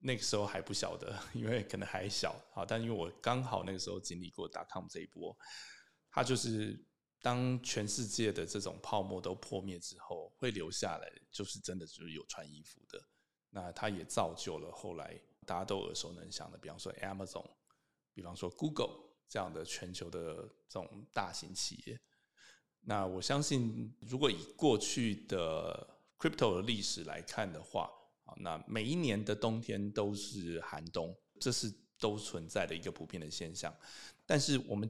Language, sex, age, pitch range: Chinese, male, 20-39, 95-125 Hz